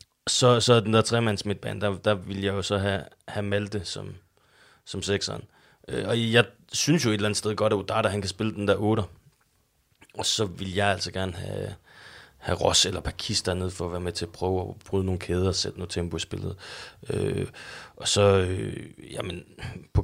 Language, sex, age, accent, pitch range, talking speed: Danish, male, 30-49, native, 90-105 Hz, 215 wpm